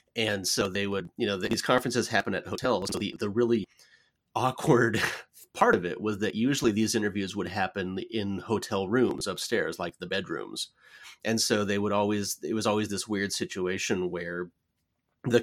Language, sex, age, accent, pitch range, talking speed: English, male, 30-49, American, 95-115 Hz, 180 wpm